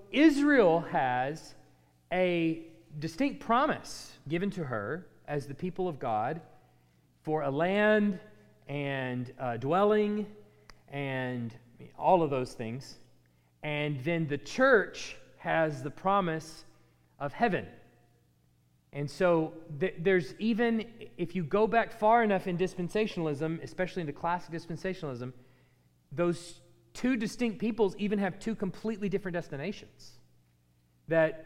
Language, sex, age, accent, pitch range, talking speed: English, male, 30-49, American, 125-185 Hz, 115 wpm